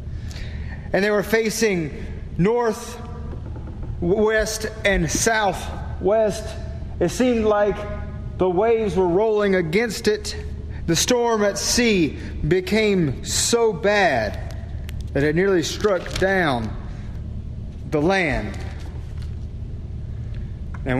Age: 40-59